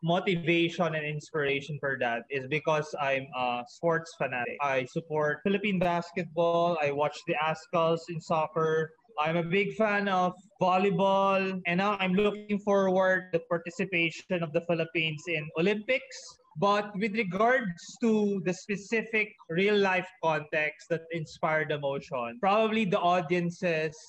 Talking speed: 135 wpm